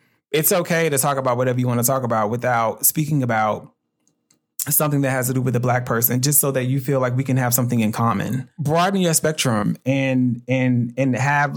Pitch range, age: 120-140 Hz, 30-49